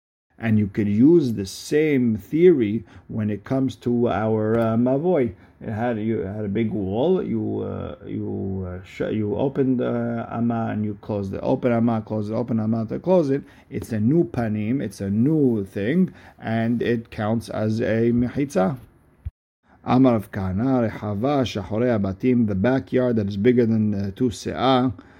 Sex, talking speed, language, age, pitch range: male, 175 wpm, English, 50-69, 100-120 Hz